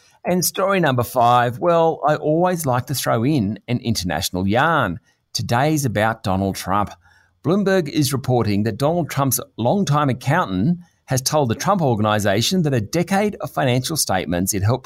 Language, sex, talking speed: English, male, 160 wpm